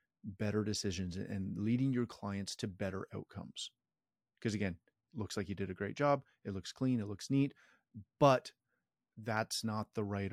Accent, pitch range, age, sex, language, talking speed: American, 100-120 Hz, 30-49, male, English, 170 wpm